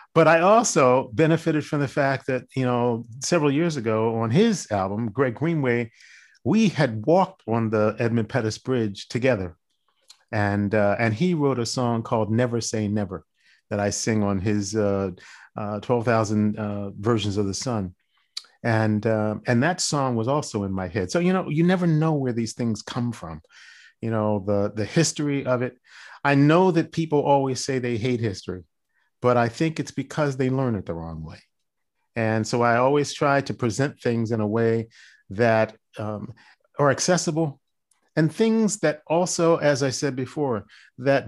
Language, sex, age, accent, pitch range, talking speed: English, male, 40-59, American, 110-155 Hz, 180 wpm